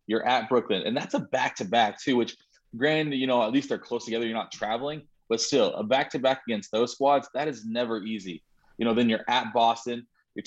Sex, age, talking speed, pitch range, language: male, 20-39, 220 wpm, 110-135 Hz, English